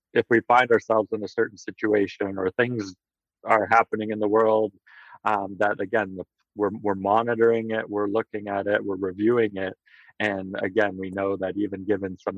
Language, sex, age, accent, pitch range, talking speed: English, male, 40-59, American, 95-110 Hz, 180 wpm